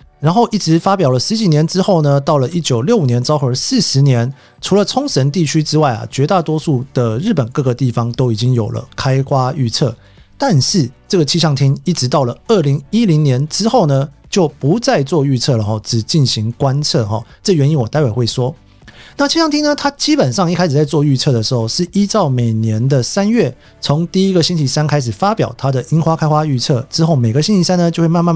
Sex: male